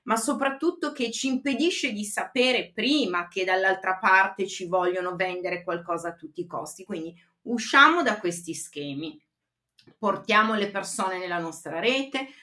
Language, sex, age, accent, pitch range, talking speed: Italian, female, 30-49, native, 190-285 Hz, 145 wpm